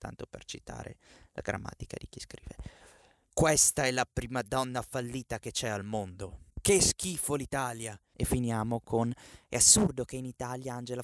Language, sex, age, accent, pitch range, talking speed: Italian, male, 20-39, native, 125-175 Hz, 165 wpm